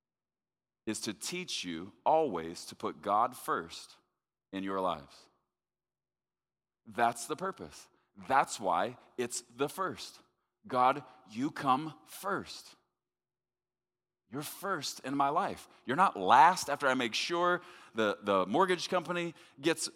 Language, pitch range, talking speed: English, 115-180 Hz, 125 wpm